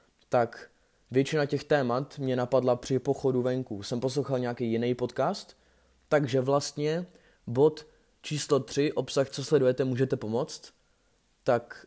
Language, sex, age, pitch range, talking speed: Czech, male, 20-39, 115-130 Hz, 125 wpm